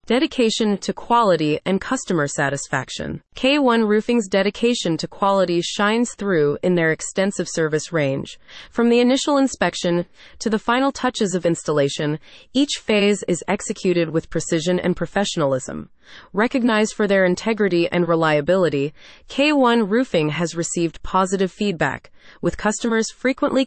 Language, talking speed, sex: English, 130 wpm, female